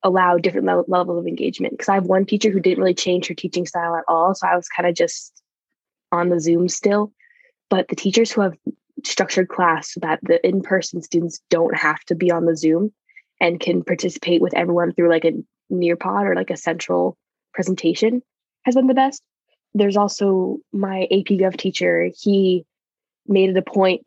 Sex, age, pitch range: female, 10-29, 170-195 Hz